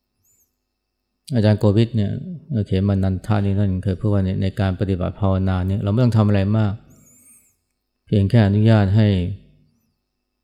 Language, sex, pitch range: Thai, male, 95-110 Hz